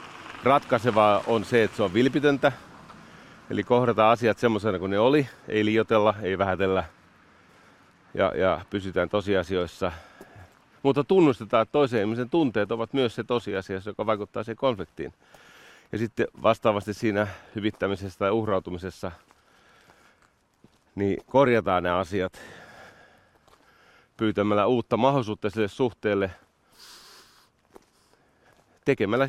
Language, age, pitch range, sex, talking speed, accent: Finnish, 40-59, 95-115 Hz, male, 110 wpm, native